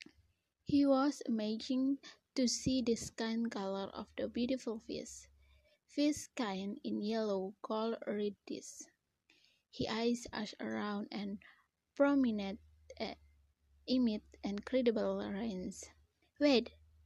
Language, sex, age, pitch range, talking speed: English, female, 20-39, 205-260 Hz, 100 wpm